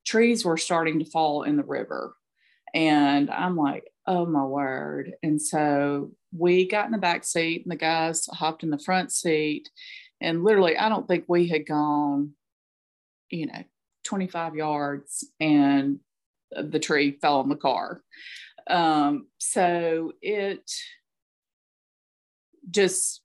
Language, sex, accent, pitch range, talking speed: English, female, American, 145-180 Hz, 135 wpm